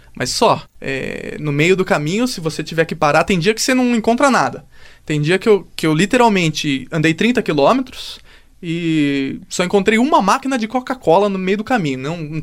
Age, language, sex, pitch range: 20-39, Portuguese, male, 155-220 Hz